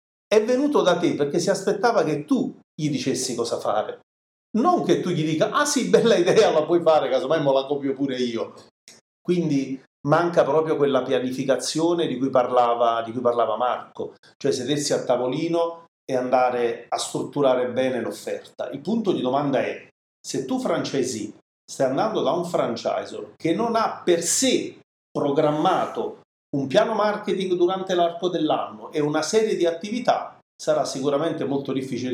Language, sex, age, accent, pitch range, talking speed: Italian, male, 40-59, native, 125-175 Hz, 160 wpm